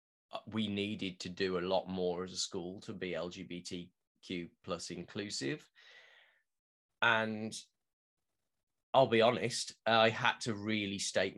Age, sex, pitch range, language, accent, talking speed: 20-39, male, 95-115 Hz, English, British, 125 wpm